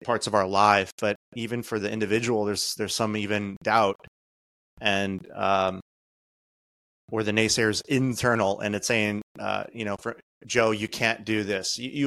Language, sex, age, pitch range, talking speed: English, male, 30-49, 100-120 Hz, 165 wpm